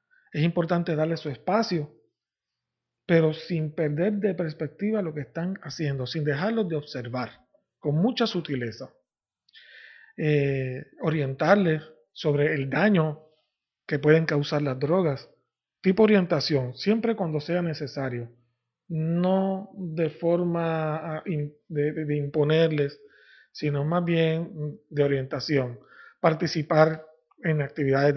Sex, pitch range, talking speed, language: male, 145-180 Hz, 110 wpm, English